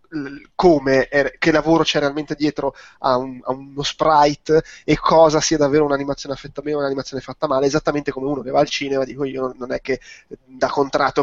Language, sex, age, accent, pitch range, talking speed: Italian, male, 20-39, native, 135-165 Hz, 195 wpm